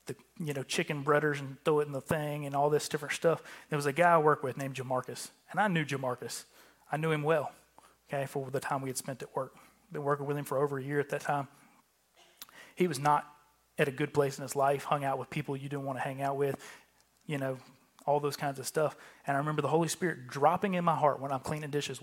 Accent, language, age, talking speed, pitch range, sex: American, English, 30-49, 260 wpm, 135-160 Hz, male